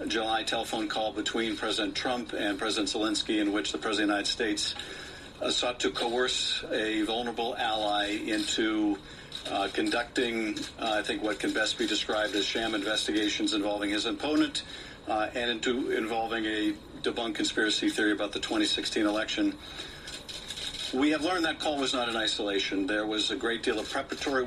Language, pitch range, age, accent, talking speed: English, 110-150 Hz, 50-69, American, 170 wpm